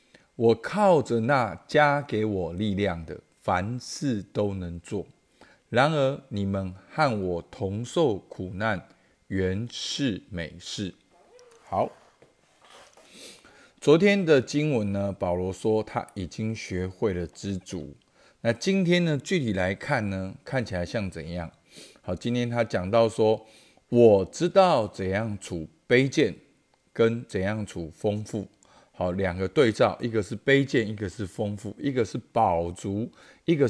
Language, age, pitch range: Chinese, 50-69, 95-130 Hz